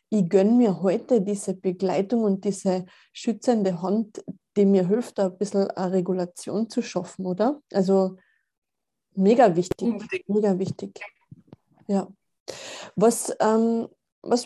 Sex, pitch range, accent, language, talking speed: female, 195-230 Hz, German, German, 115 wpm